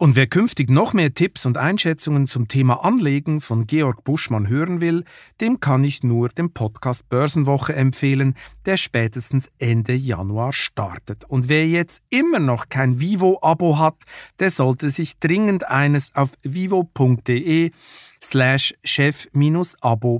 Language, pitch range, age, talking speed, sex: German, 120-160 Hz, 50-69, 135 wpm, male